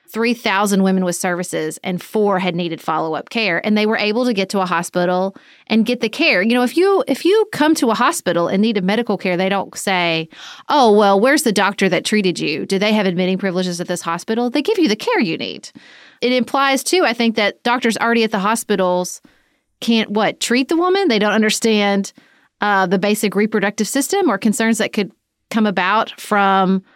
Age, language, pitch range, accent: 30-49, English, 190-235 Hz, American